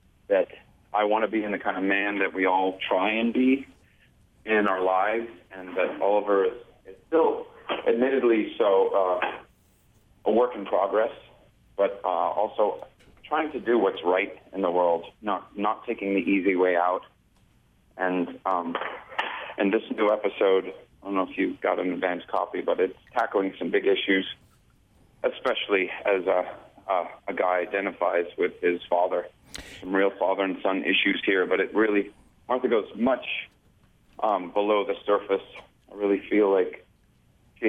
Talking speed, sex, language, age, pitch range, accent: 165 wpm, male, English, 30-49, 95-120 Hz, American